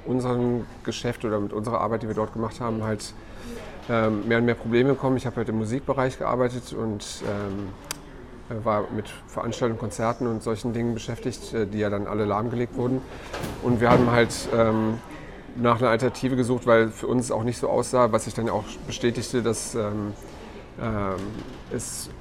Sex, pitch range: male, 110-125 Hz